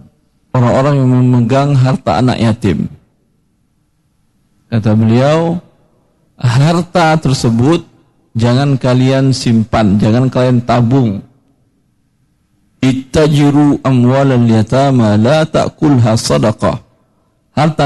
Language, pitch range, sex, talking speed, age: Indonesian, 125-170 Hz, male, 55 wpm, 50-69